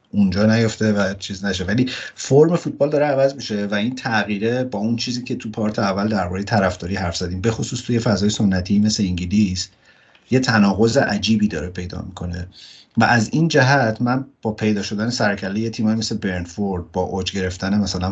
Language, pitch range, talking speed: Persian, 95-115 Hz, 170 wpm